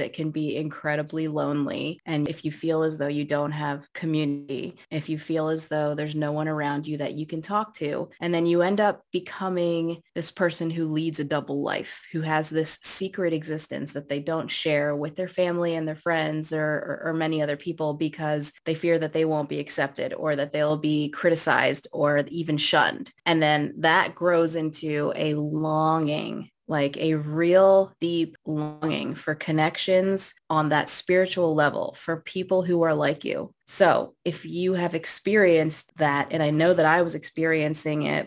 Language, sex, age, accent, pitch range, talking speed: English, female, 20-39, American, 150-175 Hz, 185 wpm